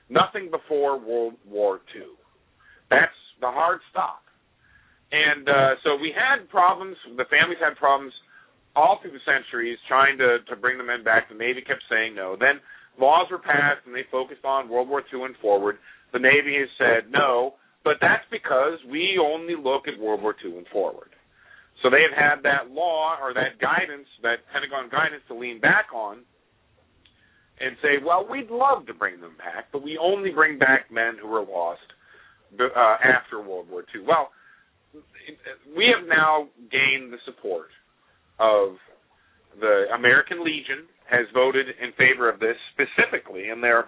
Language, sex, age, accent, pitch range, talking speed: English, male, 50-69, American, 120-155 Hz, 170 wpm